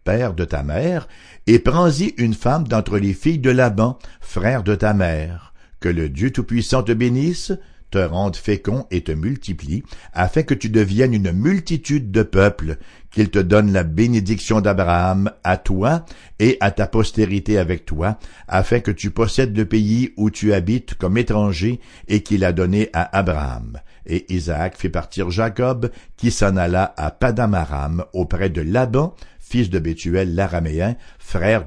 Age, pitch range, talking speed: 60-79, 90-120 Hz, 160 wpm